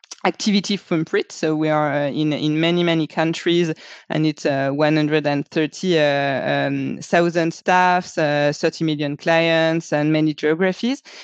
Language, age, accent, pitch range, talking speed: English, 20-39, French, 160-200 Hz, 140 wpm